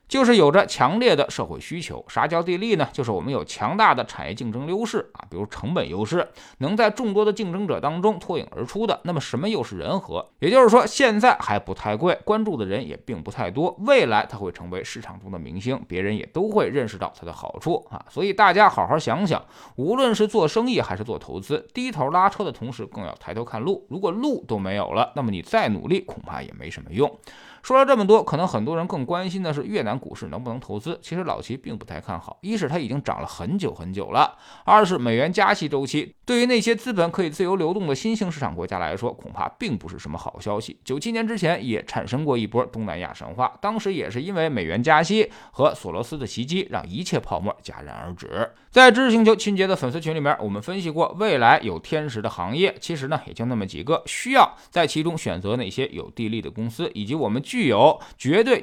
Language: Chinese